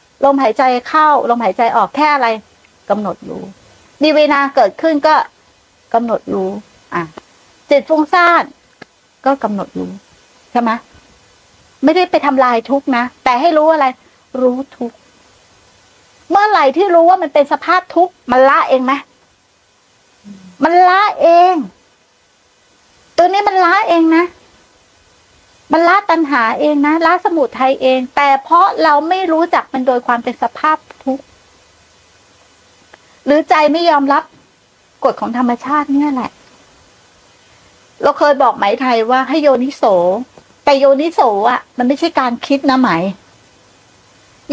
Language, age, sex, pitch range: Thai, 60-79, female, 240-320 Hz